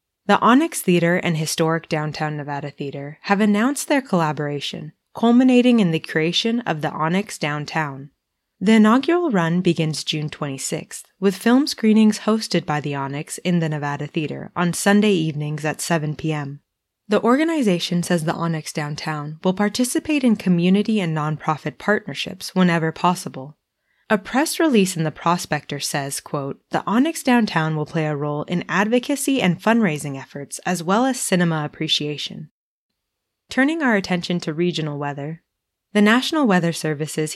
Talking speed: 150 wpm